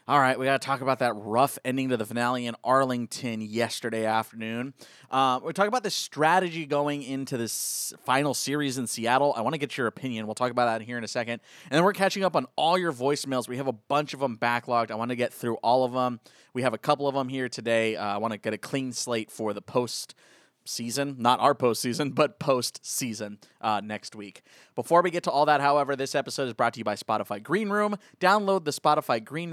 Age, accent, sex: 20-39, American, male